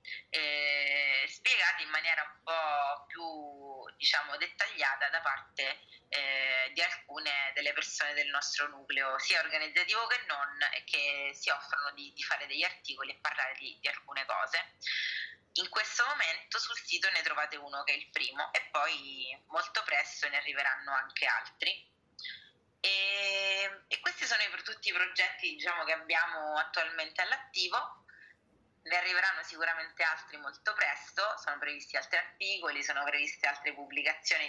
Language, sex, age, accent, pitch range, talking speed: Italian, female, 20-39, native, 140-180 Hz, 145 wpm